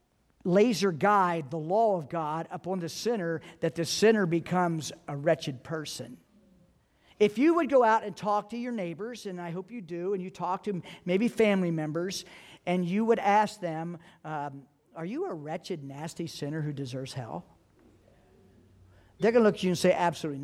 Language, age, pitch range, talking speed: English, 50-69, 160-210 Hz, 180 wpm